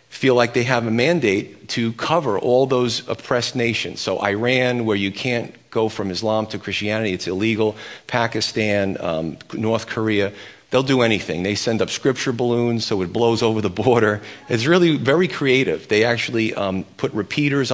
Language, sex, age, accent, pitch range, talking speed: English, male, 40-59, American, 105-130 Hz, 175 wpm